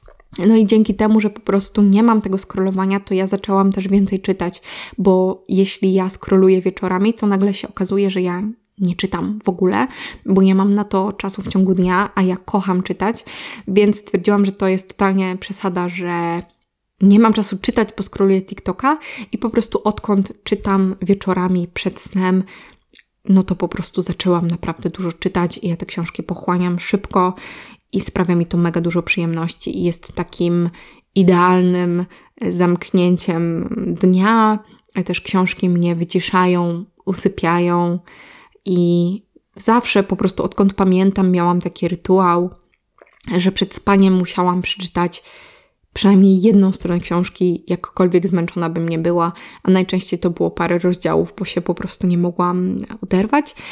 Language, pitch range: Polish, 180-200 Hz